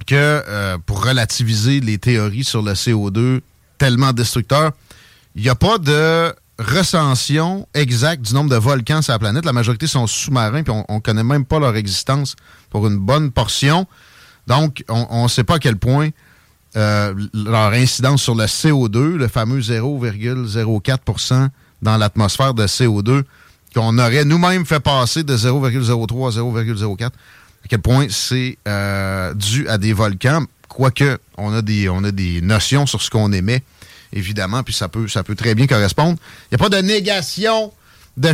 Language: French